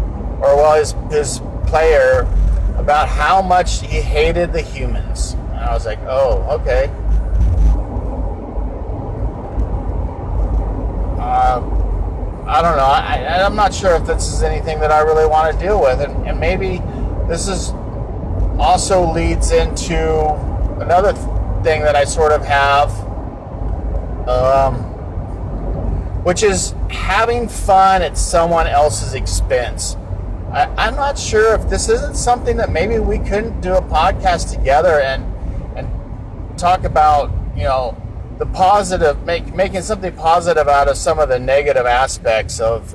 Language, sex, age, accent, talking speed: English, male, 40-59, American, 135 wpm